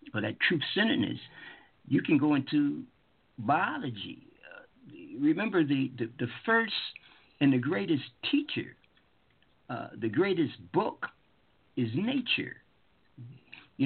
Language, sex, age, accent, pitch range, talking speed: English, male, 60-79, American, 125-170 Hz, 115 wpm